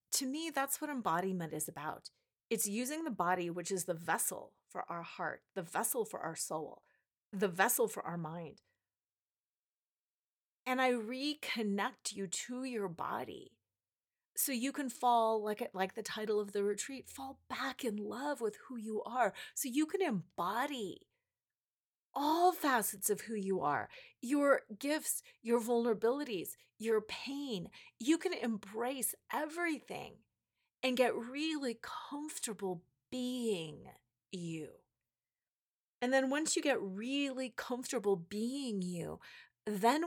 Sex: female